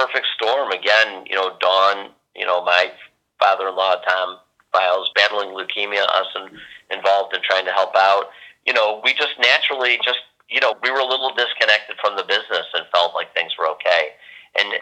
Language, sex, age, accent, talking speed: English, male, 40-59, American, 180 wpm